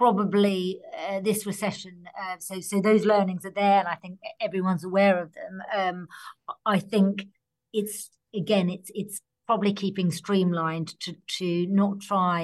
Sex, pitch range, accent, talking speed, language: female, 170-200 Hz, British, 155 wpm, English